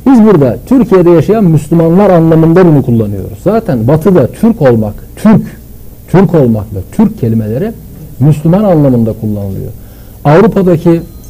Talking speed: 110 wpm